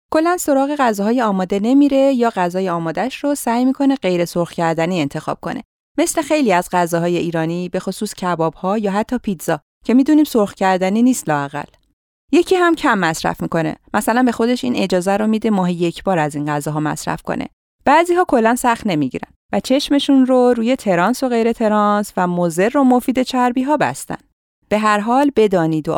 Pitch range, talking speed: 175-250 Hz, 180 wpm